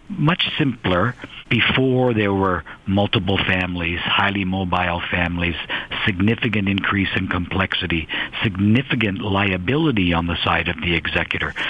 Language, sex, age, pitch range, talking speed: English, male, 50-69, 90-120 Hz, 115 wpm